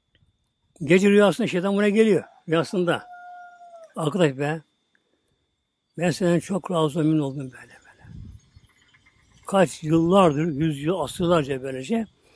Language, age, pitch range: Turkish, 60-79, 155-210 Hz